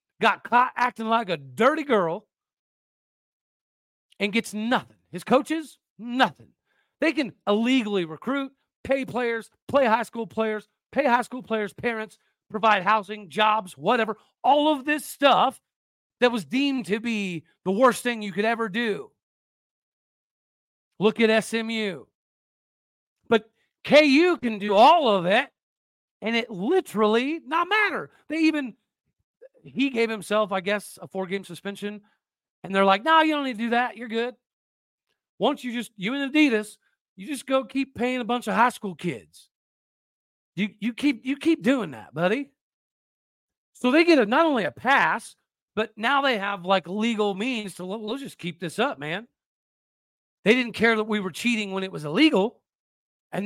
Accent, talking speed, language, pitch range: American, 165 wpm, English, 205-265 Hz